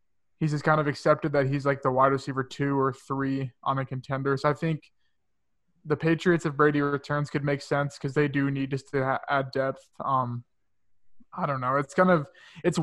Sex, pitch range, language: male, 130-150 Hz, English